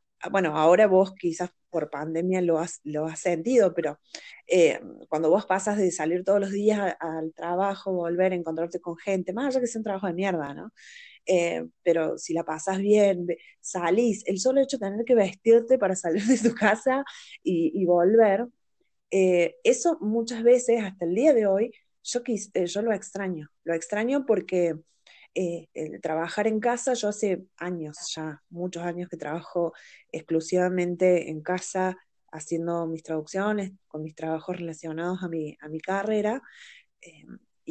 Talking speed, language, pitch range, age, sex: 170 wpm, Spanish, 165-205 Hz, 20-39, female